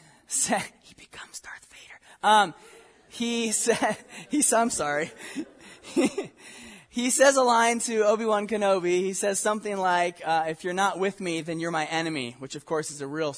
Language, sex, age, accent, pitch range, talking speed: English, male, 20-39, American, 155-215 Hz, 175 wpm